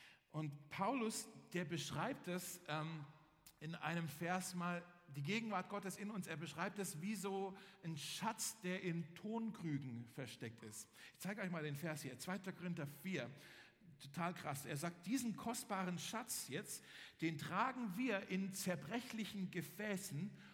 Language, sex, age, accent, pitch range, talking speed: German, male, 50-69, German, 165-210 Hz, 150 wpm